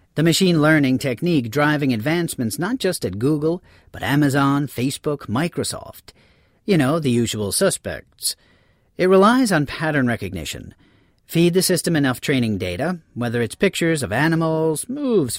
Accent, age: American, 40-59